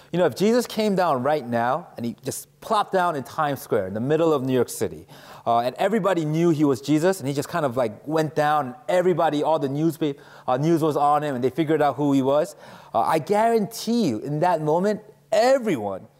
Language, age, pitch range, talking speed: English, 30-49, 135-185 Hz, 230 wpm